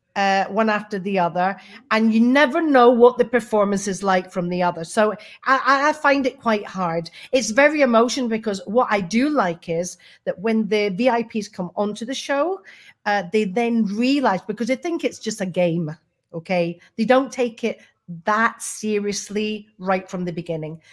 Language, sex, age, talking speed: English, female, 40-59, 180 wpm